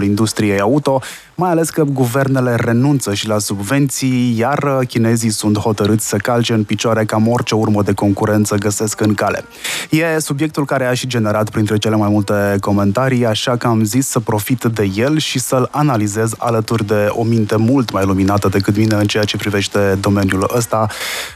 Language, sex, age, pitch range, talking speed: Romanian, male, 20-39, 105-130 Hz, 175 wpm